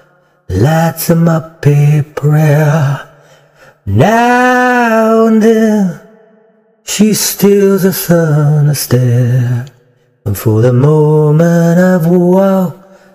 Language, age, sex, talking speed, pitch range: English, 30-49, male, 90 wpm, 140-185 Hz